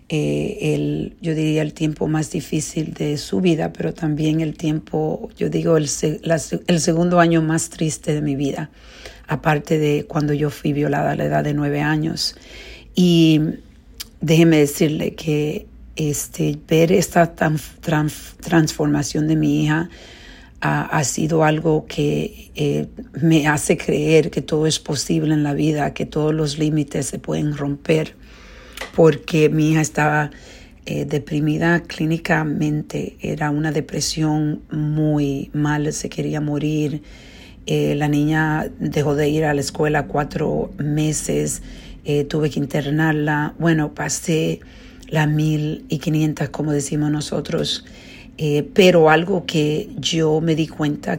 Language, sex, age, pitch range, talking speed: Spanish, female, 50-69, 150-160 Hz, 140 wpm